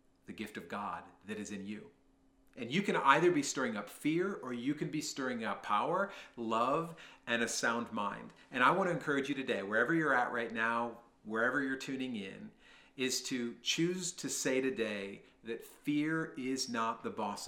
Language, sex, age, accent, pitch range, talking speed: English, male, 40-59, American, 110-150 Hz, 190 wpm